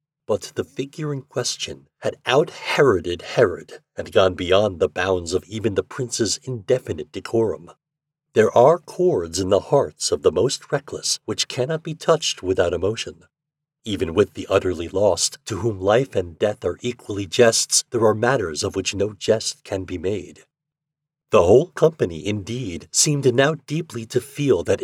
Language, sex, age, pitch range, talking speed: English, male, 50-69, 105-155 Hz, 165 wpm